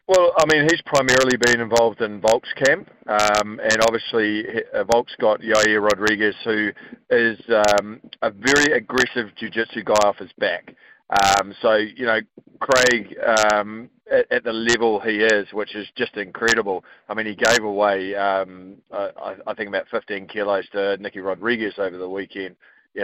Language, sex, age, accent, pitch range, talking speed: English, male, 40-59, Australian, 100-115 Hz, 165 wpm